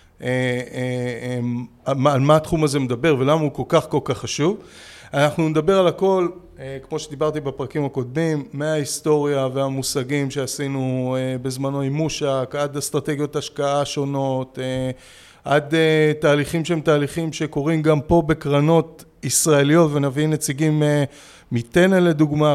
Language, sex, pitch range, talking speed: Hebrew, male, 130-155 Hz, 135 wpm